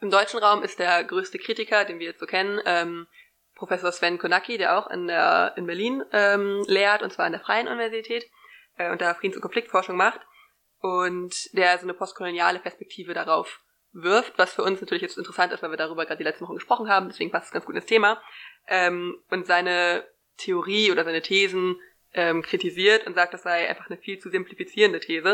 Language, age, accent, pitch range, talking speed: German, 20-39, German, 175-225 Hz, 205 wpm